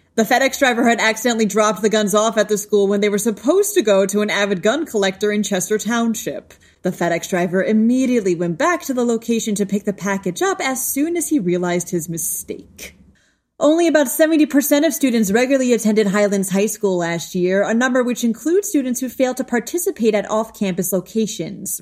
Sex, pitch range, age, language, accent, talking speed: female, 185-240 Hz, 30-49, English, American, 195 wpm